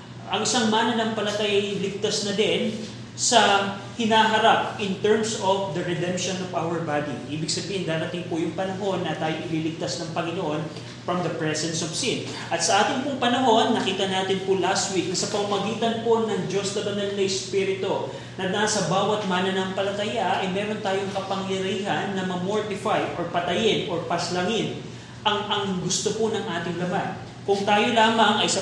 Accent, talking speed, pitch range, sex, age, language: native, 170 wpm, 180-210 Hz, male, 30-49, Filipino